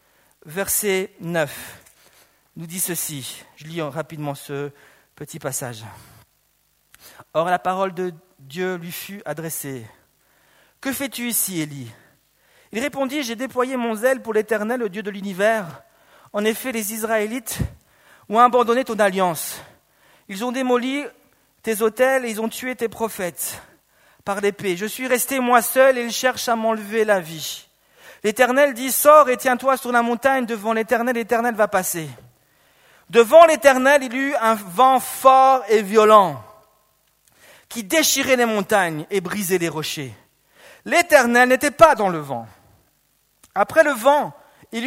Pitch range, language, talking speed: 185-260 Hz, French, 145 wpm